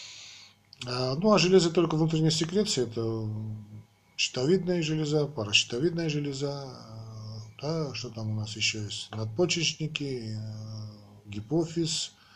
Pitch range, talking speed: 110-140 Hz, 95 wpm